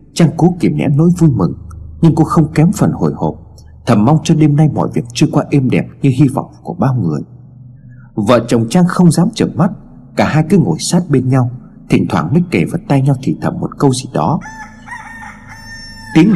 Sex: male